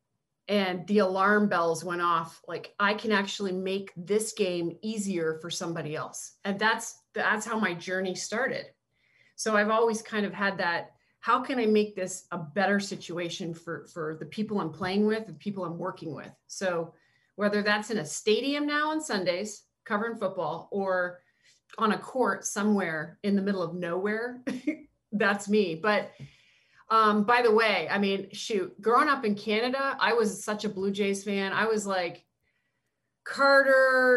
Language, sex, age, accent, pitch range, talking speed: English, female, 40-59, American, 175-215 Hz, 170 wpm